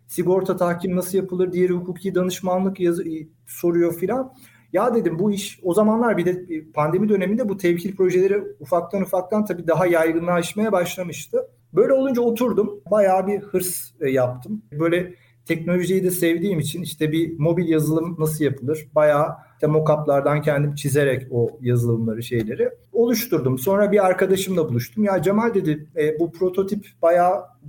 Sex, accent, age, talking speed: male, native, 40-59, 145 wpm